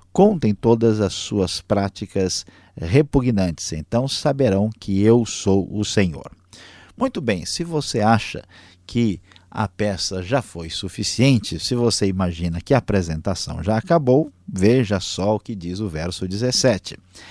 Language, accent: Portuguese, Brazilian